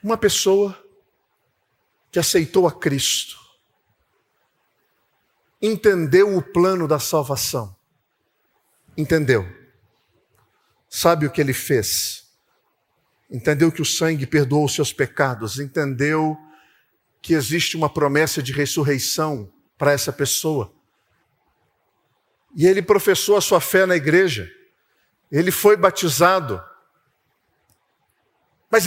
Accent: Brazilian